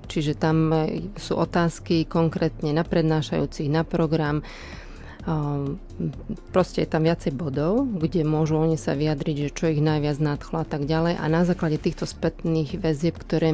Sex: female